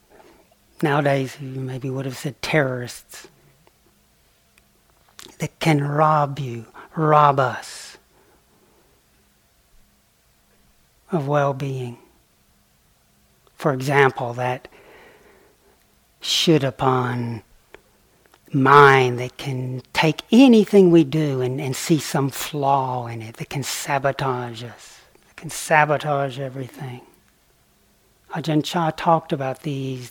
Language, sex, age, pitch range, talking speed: English, male, 60-79, 130-165 Hz, 95 wpm